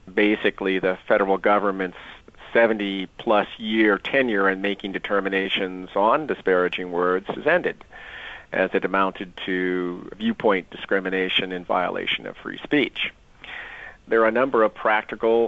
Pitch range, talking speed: 95-110 Hz, 130 wpm